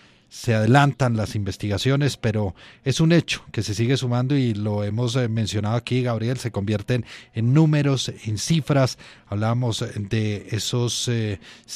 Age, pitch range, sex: 40-59, 110-135 Hz, male